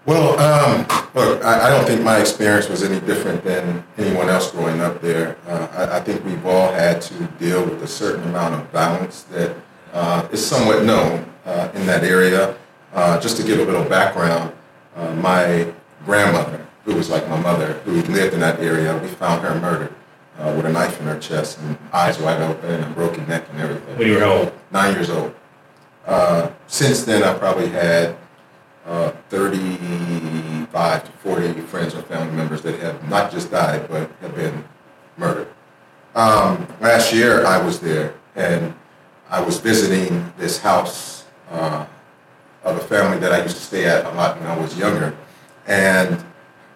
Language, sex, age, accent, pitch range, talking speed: English, male, 40-59, American, 80-95 Hz, 180 wpm